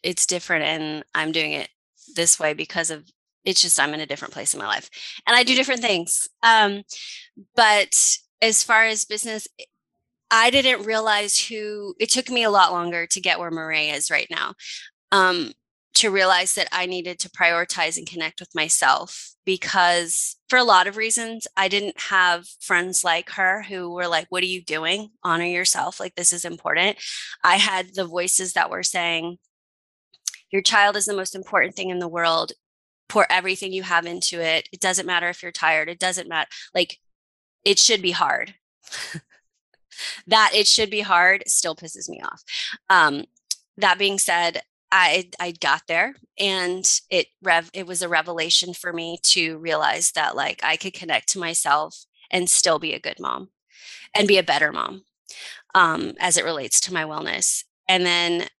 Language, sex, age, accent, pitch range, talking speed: English, female, 20-39, American, 170-205 Hz, 180 wpm